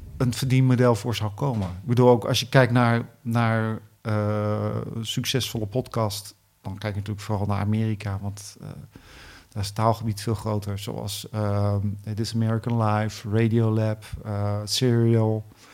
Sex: male